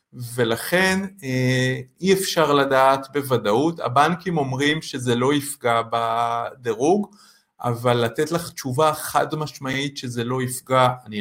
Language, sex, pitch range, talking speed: Hebrew, male, 120-150 Hz, 110 wpm